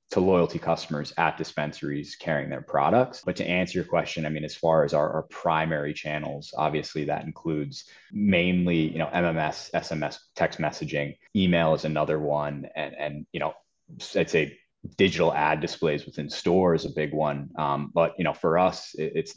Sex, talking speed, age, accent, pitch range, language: male, 180 wpm, 20-39, American, 75-85 Hz, English